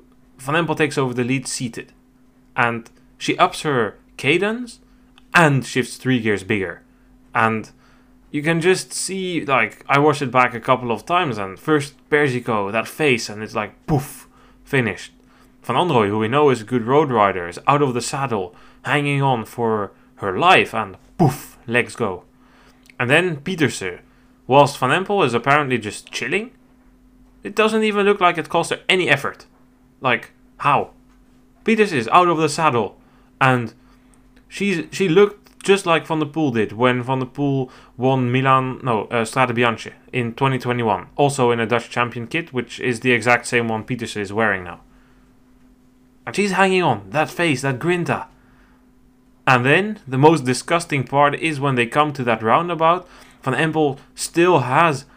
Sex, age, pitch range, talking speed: male, 10-29, 125-160 Hz, 165 wpm